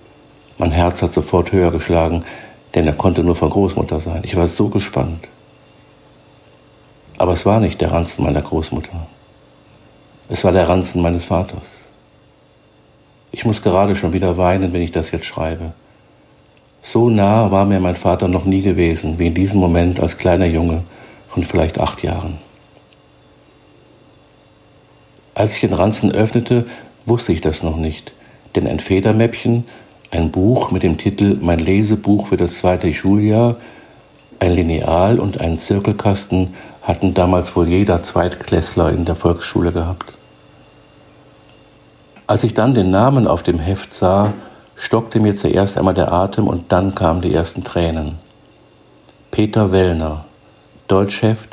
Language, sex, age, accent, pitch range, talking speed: German, male, 50-69, German, 85-100 Hz, 145 wpm